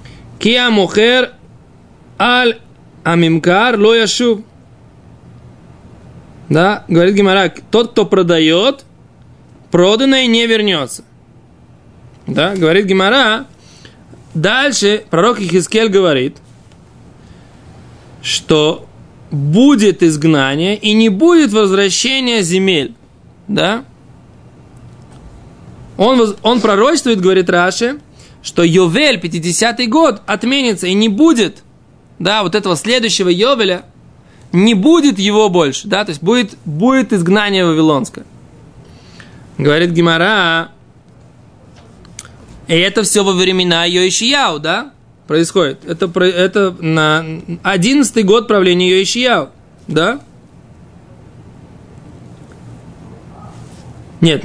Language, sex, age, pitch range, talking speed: Russian, male, 20-39, 170-225 Hz, 85 wpm